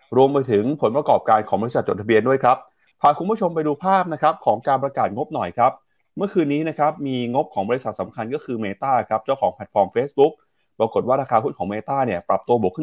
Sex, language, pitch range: male, Thai, 100-150 Hz